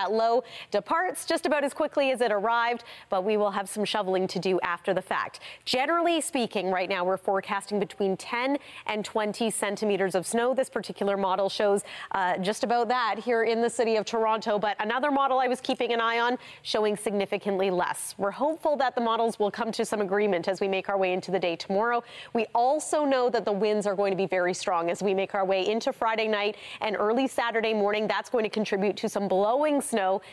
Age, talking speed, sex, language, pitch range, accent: 30-49, 220 wpm, female, English, 200-255 Hz, American